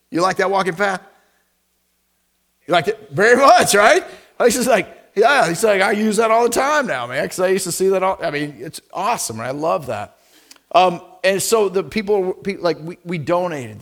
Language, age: English, 40-59